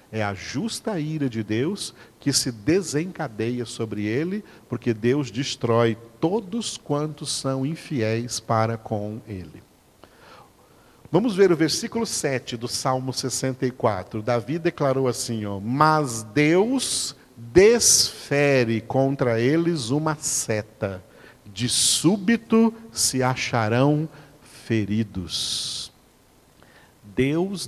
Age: 50-69